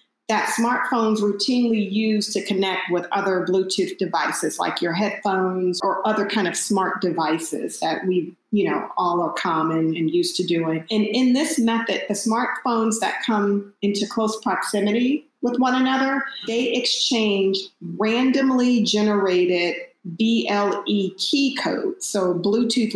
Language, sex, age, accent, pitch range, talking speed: English, female, 40-59, American, 185-240 Hz, 140 wpm